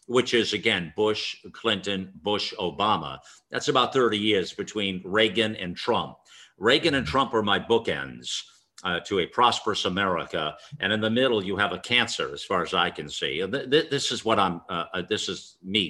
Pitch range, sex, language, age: 105-140 Hz, male, English, 50-69